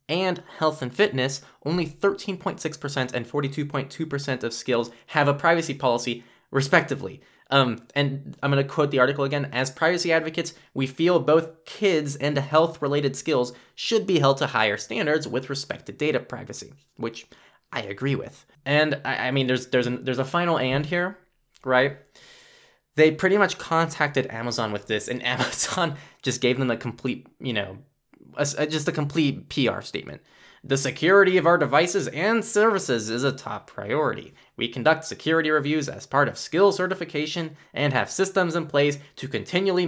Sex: male